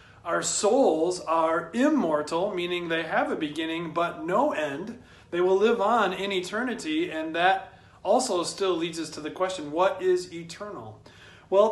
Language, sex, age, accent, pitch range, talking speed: English, male, 40-59, American, 160-215 Hz, 160 wpm